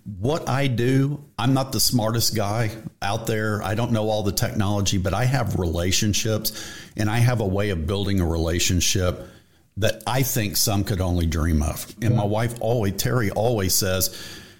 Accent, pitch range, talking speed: American, 100-125 Hz, 180 wpm